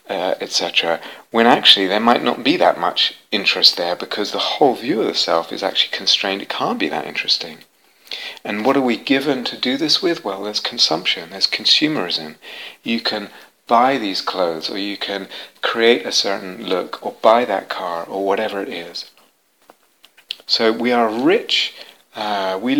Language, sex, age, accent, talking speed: English, male, 40-59, British, 175 wpm